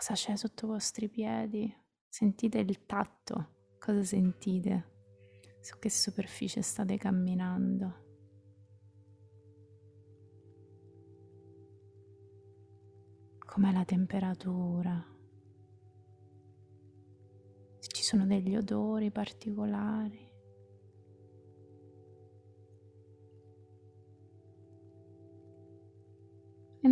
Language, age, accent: Italian, 20-39, native